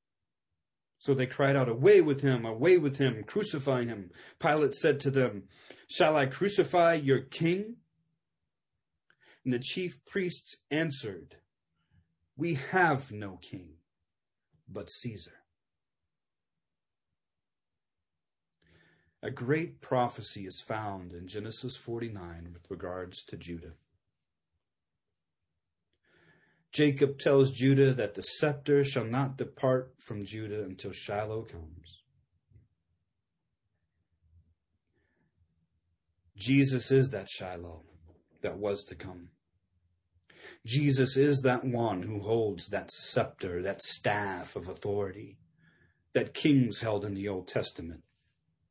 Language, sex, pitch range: English, male, 85-135 Hz